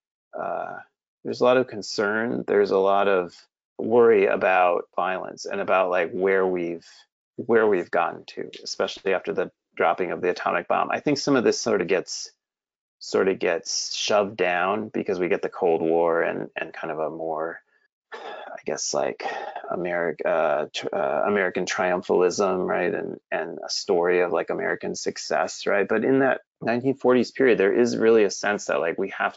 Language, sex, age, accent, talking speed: English, male, 30-49, American, 180 wpm